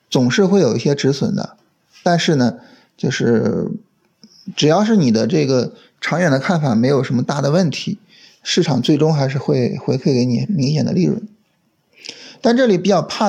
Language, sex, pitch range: Chinese, male, 135-195 Hz